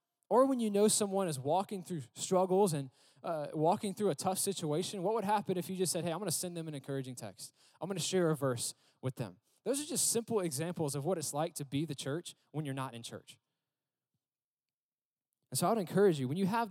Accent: American